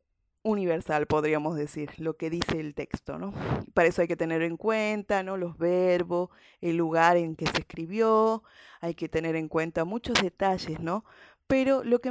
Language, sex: English, female